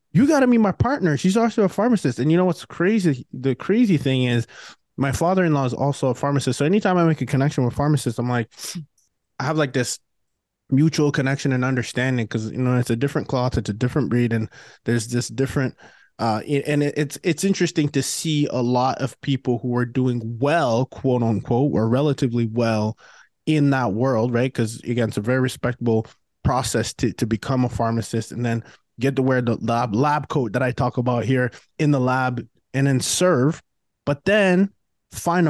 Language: English